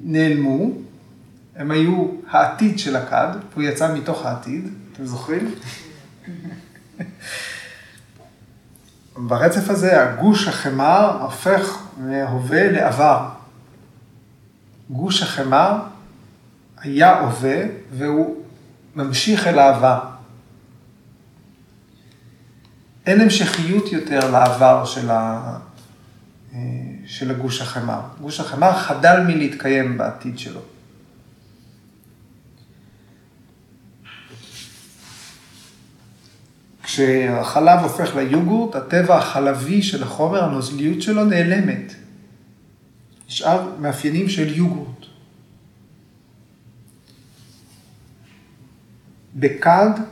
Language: Hebrew